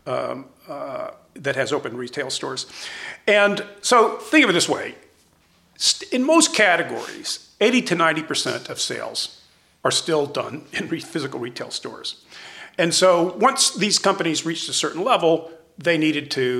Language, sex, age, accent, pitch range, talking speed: English, male, 50-69, American, 145-200 Hz, 150 wpm